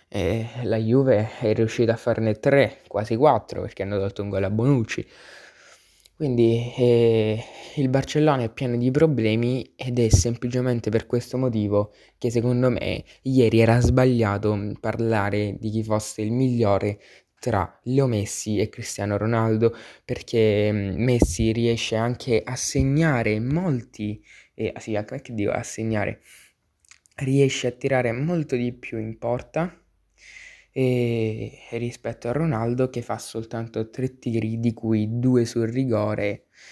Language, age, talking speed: Italian, 20-39, 135 wpm